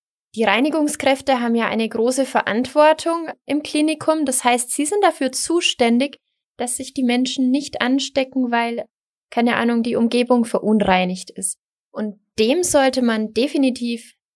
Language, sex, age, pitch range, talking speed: German, female, 20-39, 210-265 Hz, 140 wpm